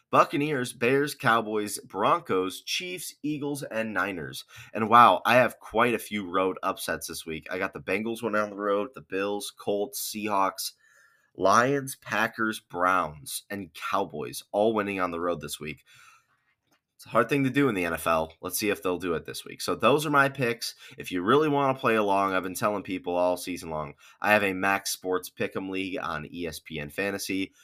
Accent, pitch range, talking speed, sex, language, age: American, 90-125 Hz, 195 wpm, male, English, 20-39